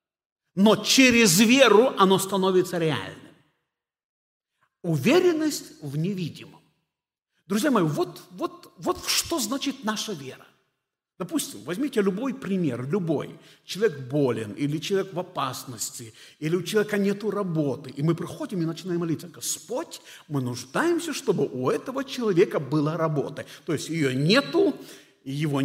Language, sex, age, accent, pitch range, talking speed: Russian, male, 50-69, native, 145-210 Hz, 125 wpm